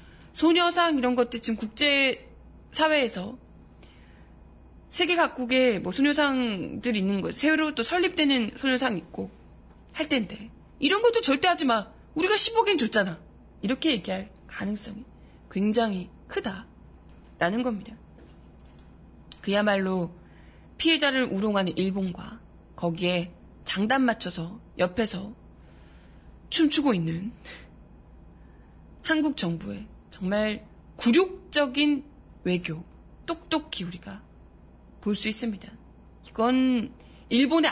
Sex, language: female, Korean